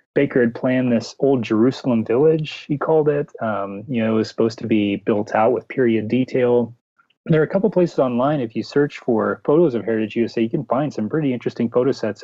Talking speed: 225 wpm